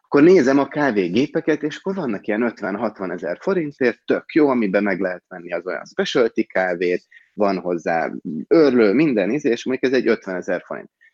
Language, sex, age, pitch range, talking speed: Hungarian, male, 30-49, 100-120 Hz, 180 wpm